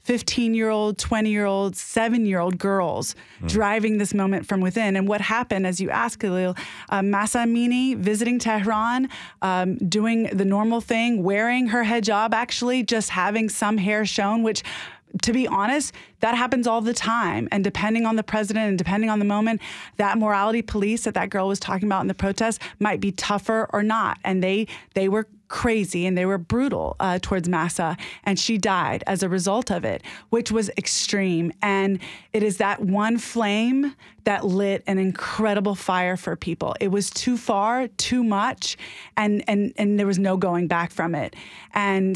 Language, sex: English, female